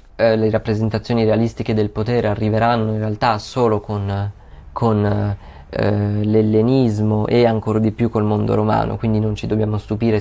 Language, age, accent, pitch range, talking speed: Italian, 20-39, native, 105-120 Hz, 145 wpm